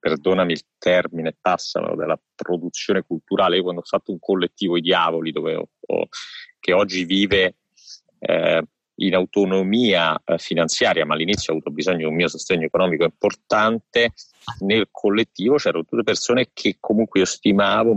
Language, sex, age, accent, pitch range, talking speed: Italian, male, 30-49, native, 90-150 Hz, 145 wpm